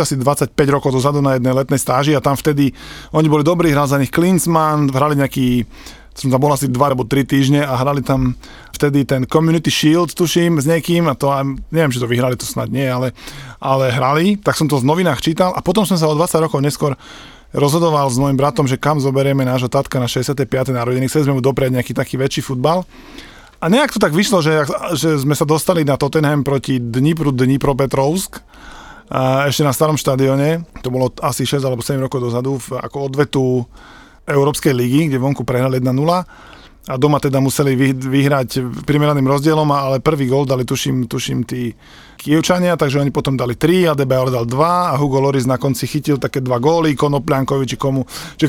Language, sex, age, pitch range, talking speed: Slovak, male, 20-39, 130-155 Hz, 190 wpm